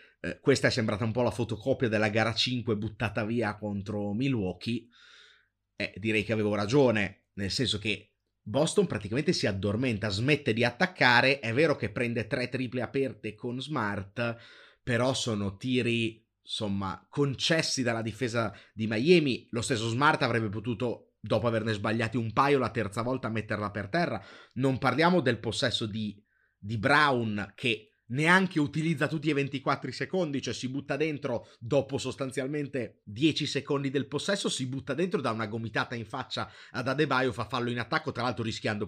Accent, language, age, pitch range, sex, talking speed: native, Italian, 30-49, 105-135 Hz, male, 160 wpm